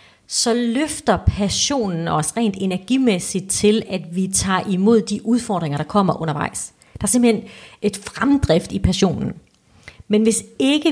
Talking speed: 145 wpm